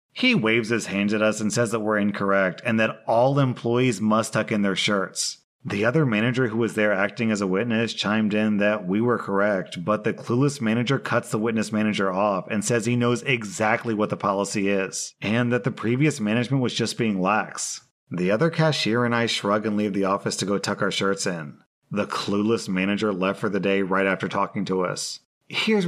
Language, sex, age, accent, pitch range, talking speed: English, male, 30-49, American, 100-115 Hz, 215 wpm